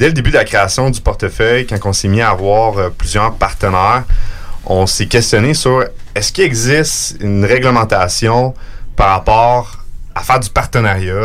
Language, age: French, 30-49